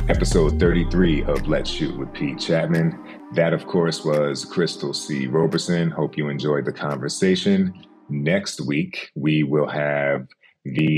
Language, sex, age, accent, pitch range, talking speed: English, male, 30-49, American, 70-85 Hz, 140 wpm